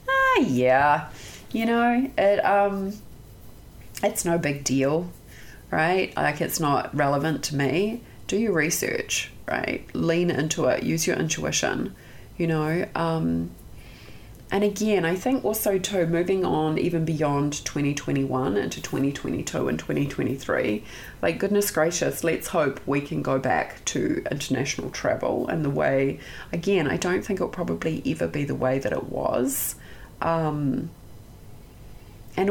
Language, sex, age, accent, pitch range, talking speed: English, female, 30-49, Australian, 140-195 Hz, 150 wpm